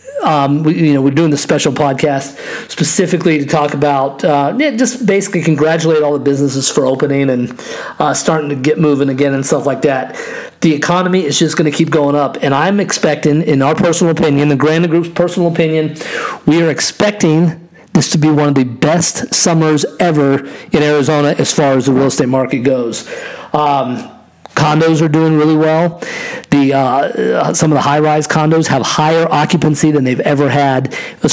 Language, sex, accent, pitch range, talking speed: English, male, American, 140-165 Hz, 190 wpm